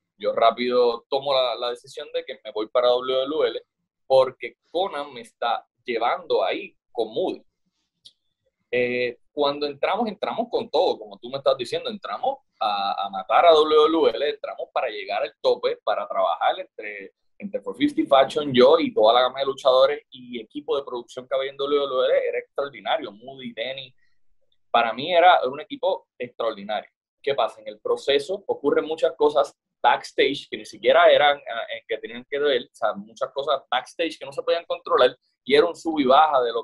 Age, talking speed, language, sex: 20-39, 180 wpm, Spanish, male